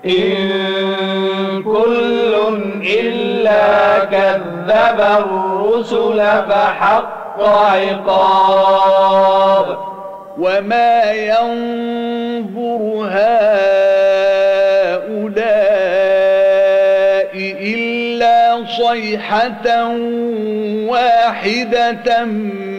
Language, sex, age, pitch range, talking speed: Arabic, male, 50-69, 195-230 Hz, 35 wpm